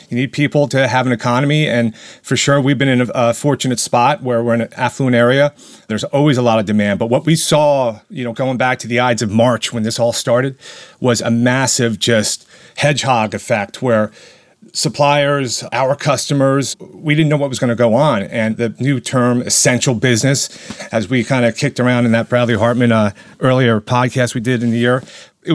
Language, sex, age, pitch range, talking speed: English, male, 30-49, 120-145 Hz, 210 wpm